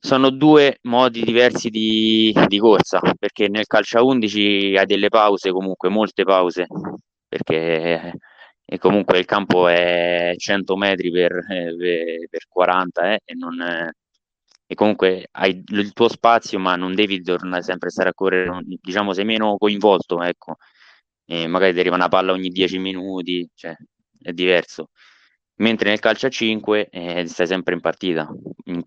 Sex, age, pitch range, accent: male, 20-39, 90-105 Hz, native